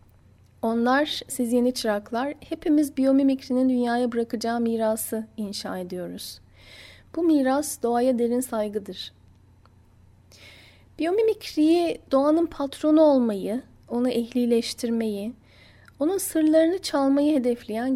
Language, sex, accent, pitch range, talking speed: Turkish, female, native, 210-270 Hz, 85 wpm